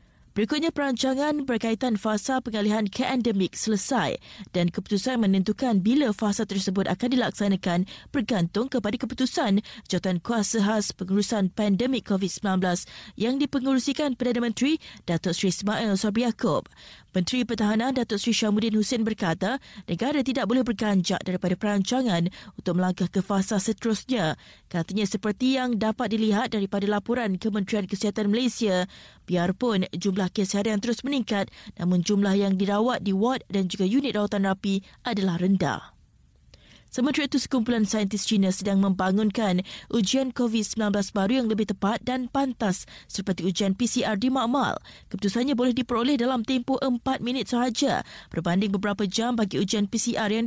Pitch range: 195-245 Hz